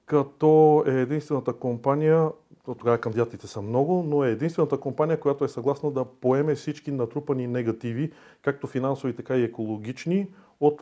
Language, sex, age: Bulgarian, male, 40-59